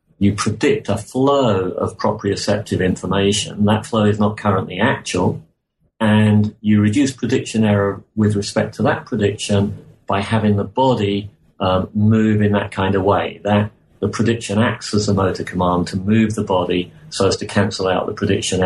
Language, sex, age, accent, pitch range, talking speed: English, male, 40-59, British, 95-110 Hz, 170 wpm